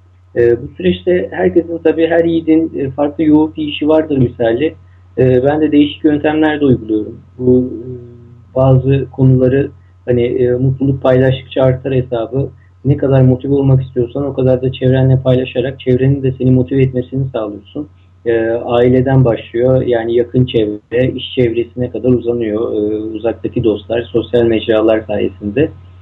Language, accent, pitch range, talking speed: Turkish, native, 110-130 Hz, 145 wpm